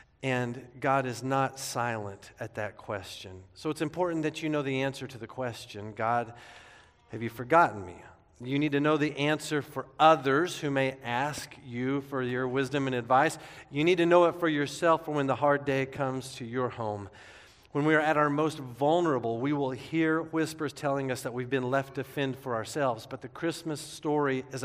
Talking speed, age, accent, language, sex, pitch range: 200 wpm, 40-59, American, English, male, 125-155 Hz